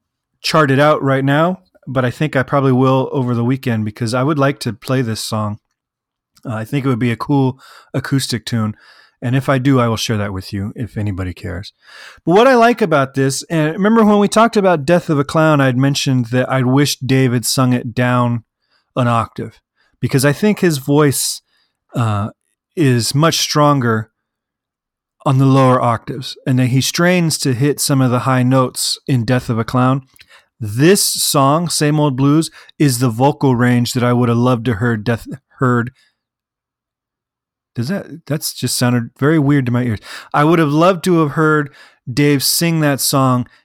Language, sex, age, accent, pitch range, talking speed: English, male, 30-49, American, 125-150 Hz, 190 wpm